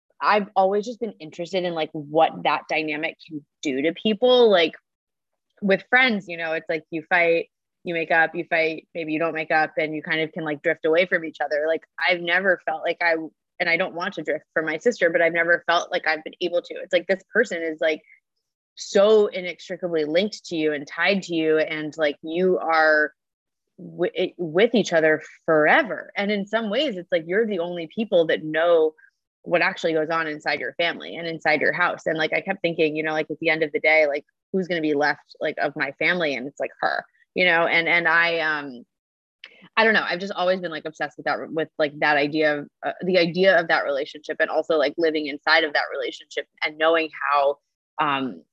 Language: English